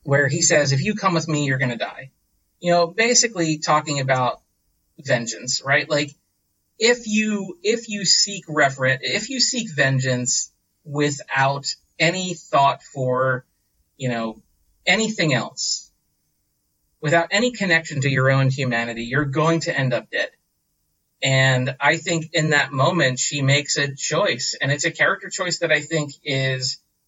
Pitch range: 135-175 Hz